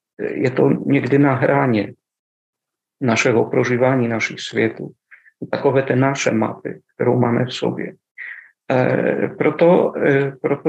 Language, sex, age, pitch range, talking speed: Czech, male, 50-69, 125-145 Hz, 120 wpm